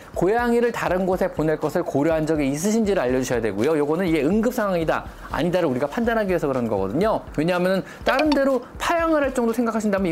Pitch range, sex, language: 155-240 Hz, male, Korean